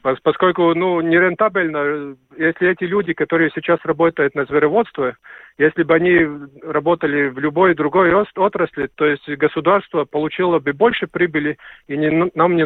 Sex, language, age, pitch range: male, Russian, 40-59, 135-175 Hz